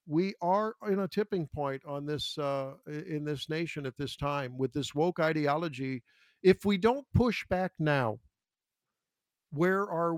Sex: male